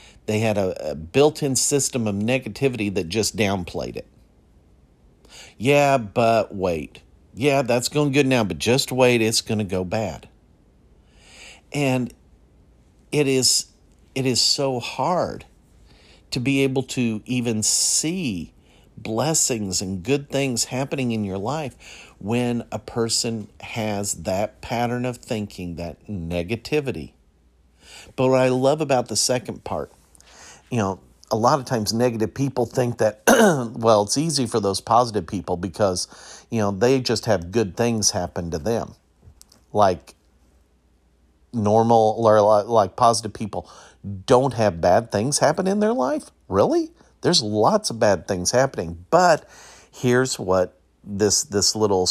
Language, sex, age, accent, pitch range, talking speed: English, male, 50-69, American, 95-130 Hz, 140 wpm